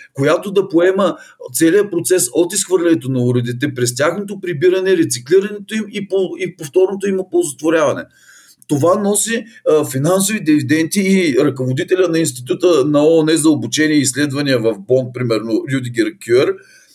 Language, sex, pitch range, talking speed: Bulgarian, male, 135-195 Hz, 140 wpm